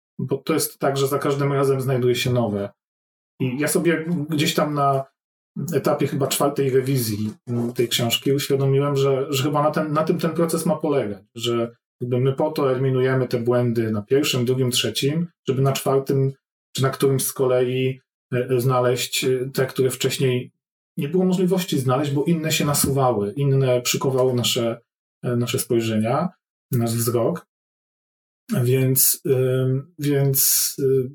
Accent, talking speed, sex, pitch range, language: native, 145 wpm, male, 125-145 Hz, Polish